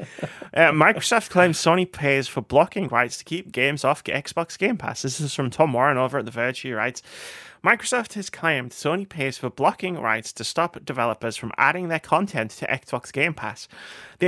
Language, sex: English, male